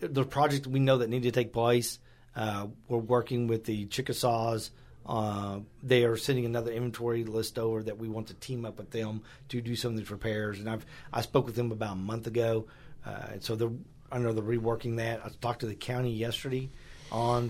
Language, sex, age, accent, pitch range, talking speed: English, male, 40-59, American, 115-130 Hz, 215 wpm